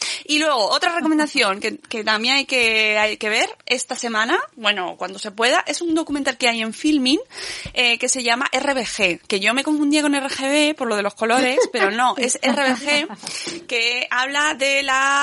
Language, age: Spanish, 20-39